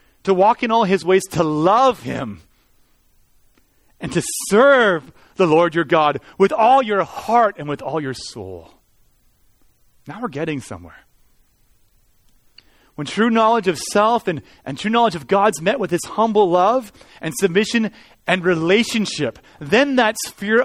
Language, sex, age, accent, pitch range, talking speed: English, male, 30-49, American, 150-230 Hz, 150 wpm